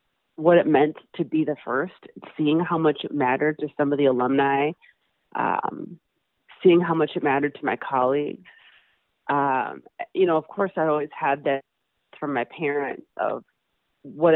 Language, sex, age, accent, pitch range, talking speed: English, female, 30-49, American, 140-170 Hz, 165 wpm